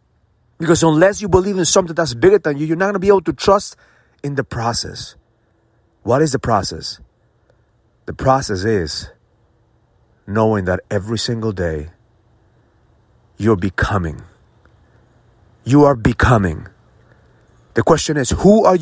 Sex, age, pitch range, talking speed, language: male, 30-49, 105-170 Hz, 135 wpm, English